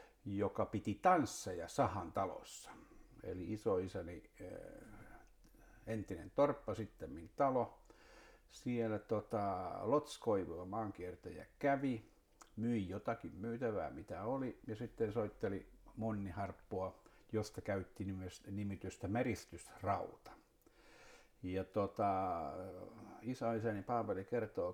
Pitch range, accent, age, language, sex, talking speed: 95-115 Hz, native, 60-79, Finnish, male, 85 wpm